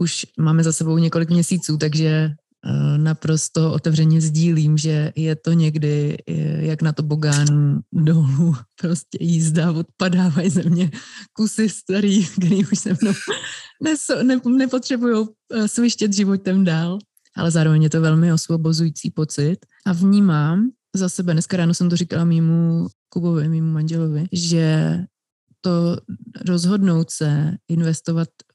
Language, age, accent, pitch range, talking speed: Czech, 20-39, native, 155-180 Hz, 125 wpm